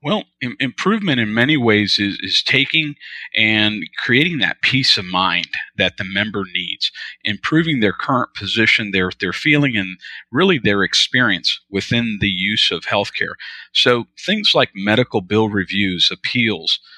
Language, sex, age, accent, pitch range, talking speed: English, male, 40-59, American, 100-120 Hz, 150 wpm